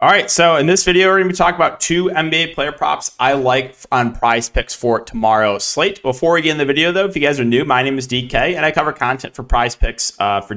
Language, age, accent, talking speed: English, 20-39, American, 270 wpm